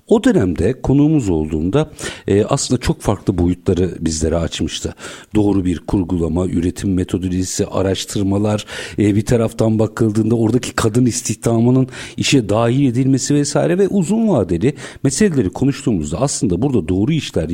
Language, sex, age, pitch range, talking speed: Turkish, male, 60-79, 95-135 Hz, 125 wpm